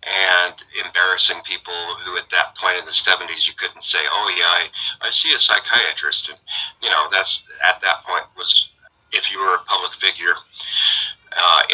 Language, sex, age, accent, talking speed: English, male, 40-59, American, 180 wpm